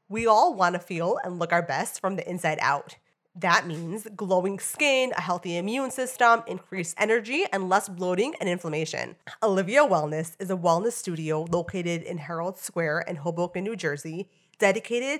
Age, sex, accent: 30-49, female, American